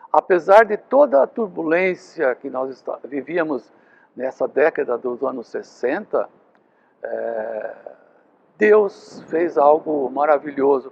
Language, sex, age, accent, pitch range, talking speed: Portuguese, male, 60-79, Brazilian, 150-230 Hz, 95 wpm